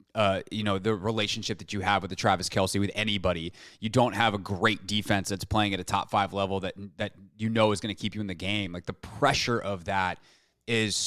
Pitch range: 95-110 Hz